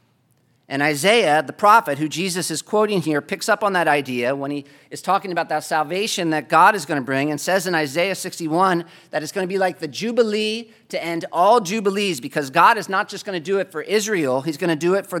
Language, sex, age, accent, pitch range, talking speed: English, male, 40-59, American, 145-200 Hz, 240 wpm